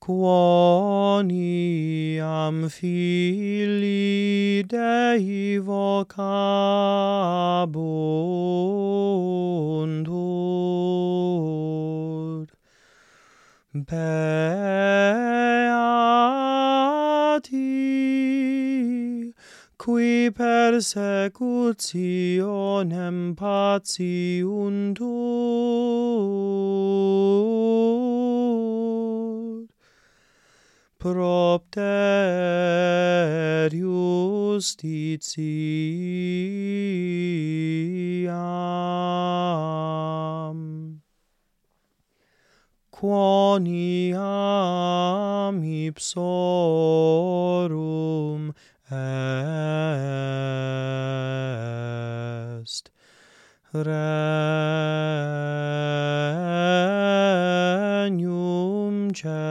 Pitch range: 160-200 Hz